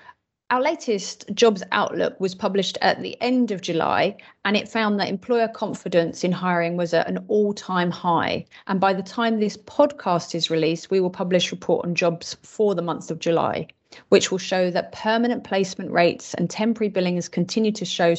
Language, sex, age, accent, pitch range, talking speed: English, female, 30-49, British, 170-210 Hz, 190 wpm